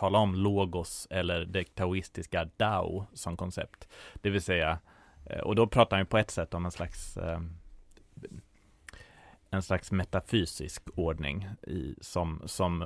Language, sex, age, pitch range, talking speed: Swedish, male, 30-49, 85-100 Hz, 135 wpm